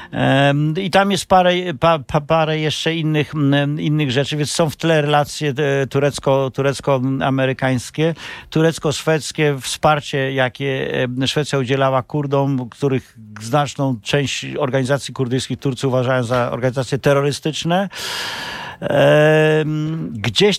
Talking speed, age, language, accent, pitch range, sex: 100 wpm, 50-69, Polish, native, 125-145 Hz, male